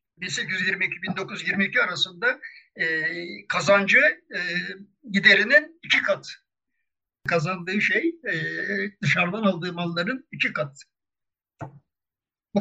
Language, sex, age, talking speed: Turkish, male, 60-79, 80 wpm